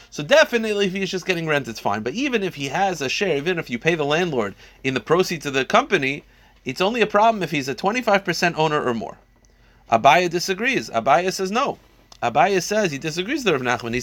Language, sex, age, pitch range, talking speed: English, male, 30-49, 120-190 Hz, 220 wpm